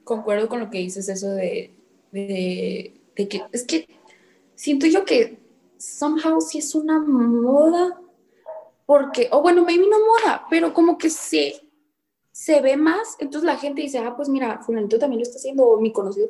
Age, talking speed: 20-39, 185 wpm